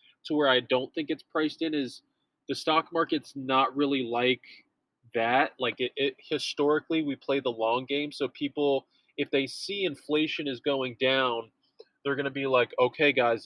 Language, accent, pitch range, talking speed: English, American, 130-150 Hz, 185 wpm